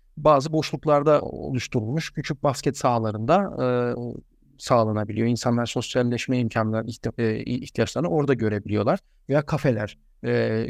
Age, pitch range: 40-59, 115-145 Hz